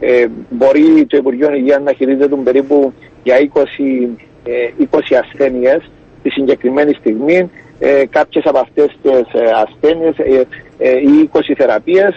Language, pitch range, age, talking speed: Greek, 130-155 Hz, 50-69, 110 wpm